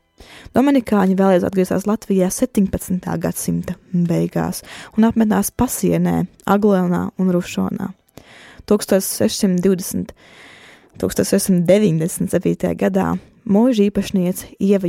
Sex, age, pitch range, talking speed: female, 20-39, 180-210 Hz, 75 wpm